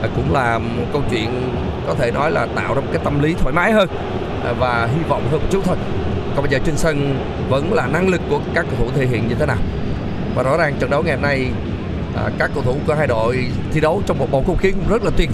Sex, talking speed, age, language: male, 260 wpm, 20-39, Vietnamese